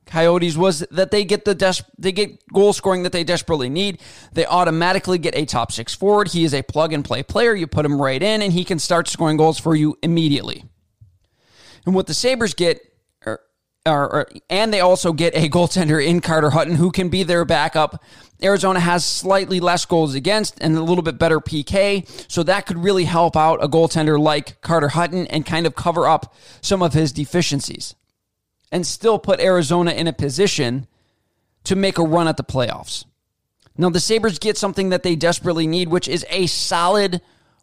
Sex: male